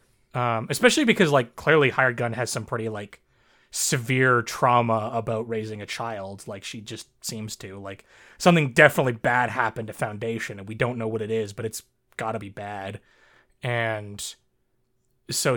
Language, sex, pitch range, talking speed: English, male, 115-170 Hz, 165 wpm